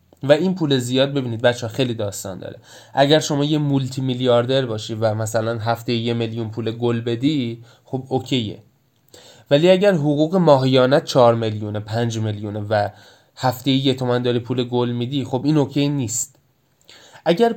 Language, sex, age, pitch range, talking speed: Persian, male, 20-39, 115-145 Hz, 155 wpm